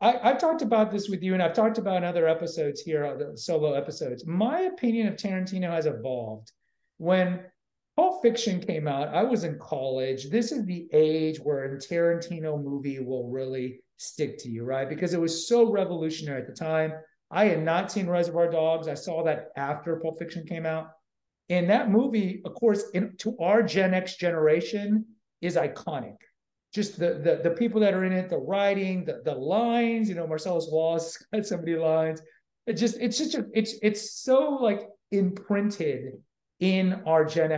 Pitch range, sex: 160-220 Hz, male